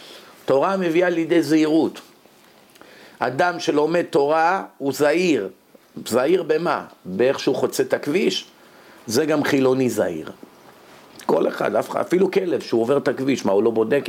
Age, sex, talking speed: 50-69, male, 135 wpm